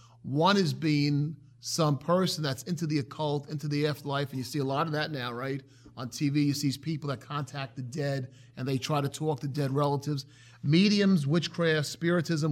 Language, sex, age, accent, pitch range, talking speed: English, male, 30-49, American, 125-175 Hz, 195 wpm